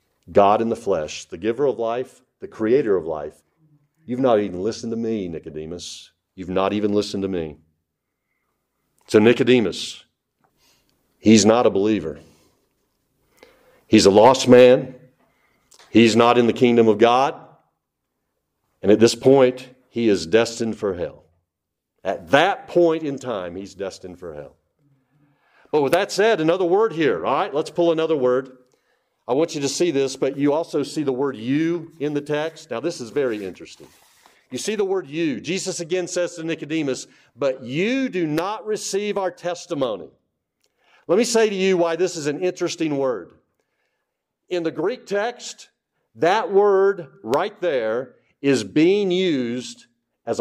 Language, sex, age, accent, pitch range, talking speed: English, male, 50-69, American, 125-200 Hz, 160 wpm